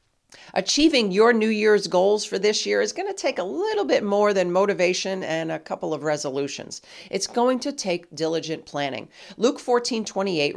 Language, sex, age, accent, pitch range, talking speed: English, female, 40-59, American, 165-250 Hz, 180 wpm